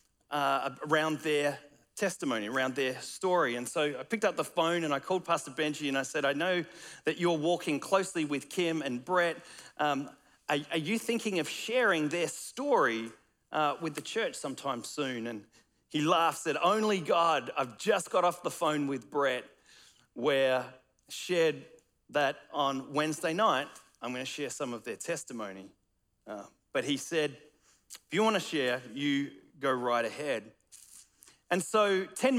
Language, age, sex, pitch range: English, 40-59, male, 135-175 Hz